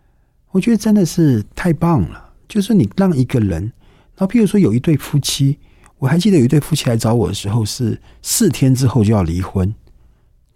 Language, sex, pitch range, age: Chinese, male, 100-145 Hz, 50-69